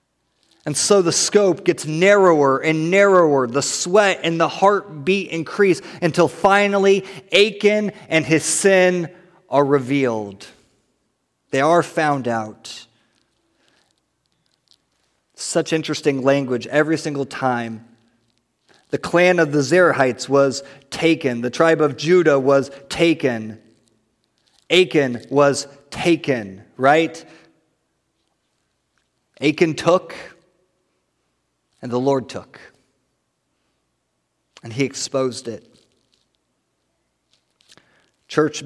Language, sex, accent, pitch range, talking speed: English, male, American, 130-160 Hz, 95 wpm